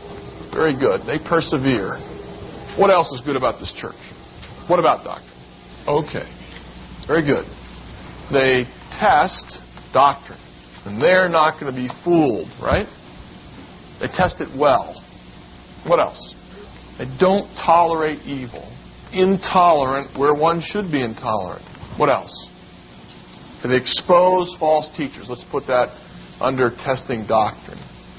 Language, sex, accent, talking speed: English, male, American, 120 wpm